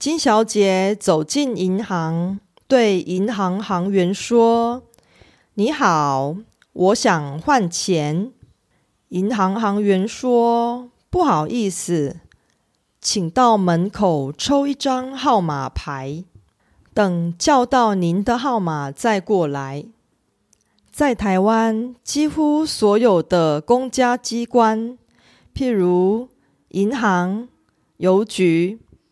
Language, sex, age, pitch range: Korean, female, 30-49, 170-240 Hz